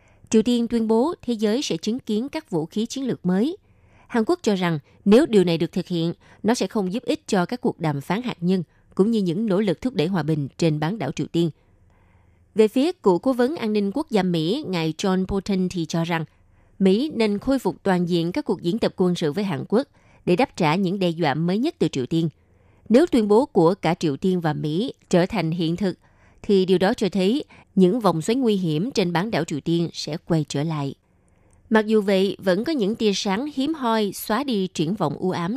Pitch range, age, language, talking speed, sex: 165-220 Hz, 20-39, Vietnamese, 240 wpm, female